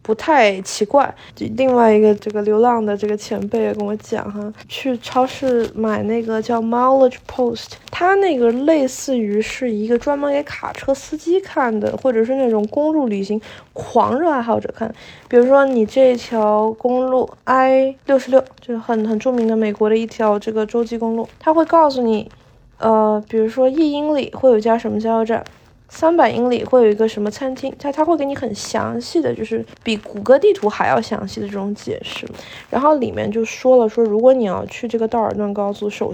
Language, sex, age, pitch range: Chinese, female, 20-39, 210-265 Hz